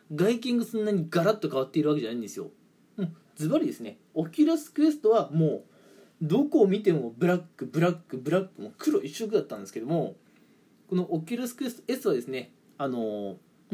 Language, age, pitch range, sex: Japanese, 20-39, 170-260 Hz, male